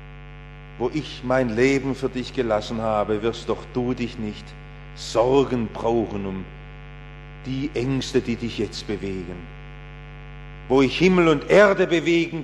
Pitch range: 135-205 Hz